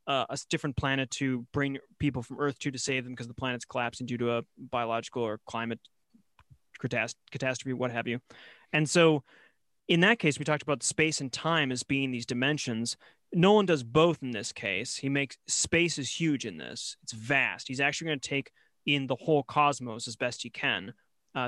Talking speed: 200 wpm